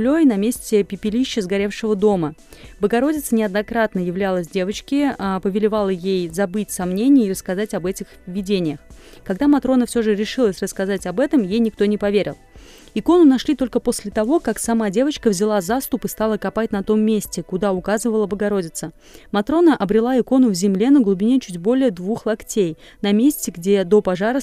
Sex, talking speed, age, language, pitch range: female, 160 wpm, 30-49, Russian, 195-235 Hz